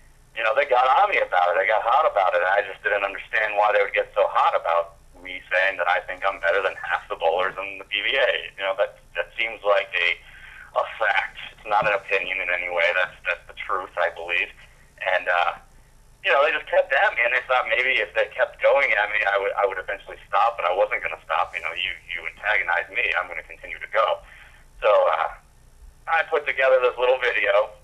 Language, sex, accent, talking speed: English, male, American, 240 wpm